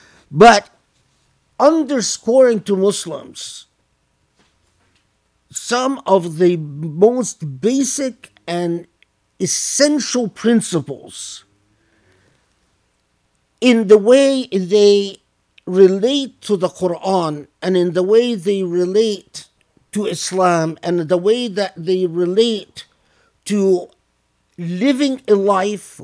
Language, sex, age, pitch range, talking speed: English, male, 50-69, 175-235 Hz, 90 wpm